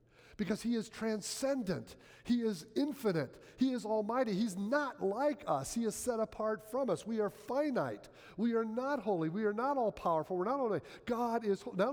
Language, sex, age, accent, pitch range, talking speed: English, male, 50-69, American, 155-225 Hz, 185 wpm